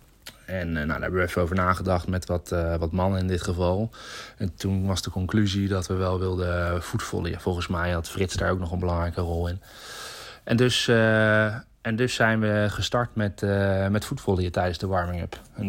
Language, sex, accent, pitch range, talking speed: Dutch, male, Dutch, 95-110 Hz, 200 wpm